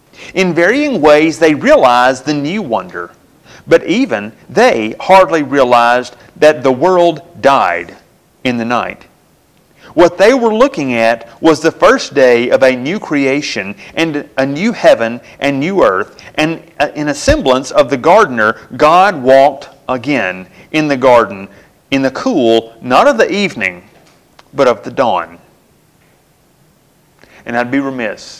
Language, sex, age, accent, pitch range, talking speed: English, male, 40-59, American, 120-170 Hz, 145 wpm